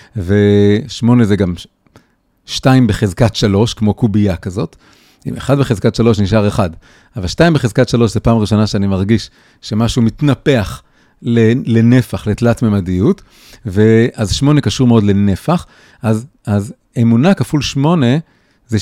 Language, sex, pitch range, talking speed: Hebrew, male, 105-130 Hz, 130 wpm